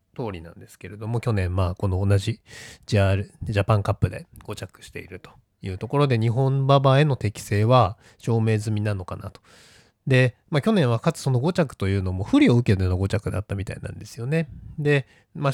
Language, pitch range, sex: Japanese, 95-135 Hz, male